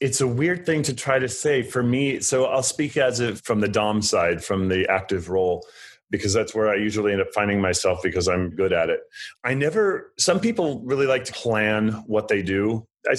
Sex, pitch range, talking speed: male, 100-125 Hz, 225 wpm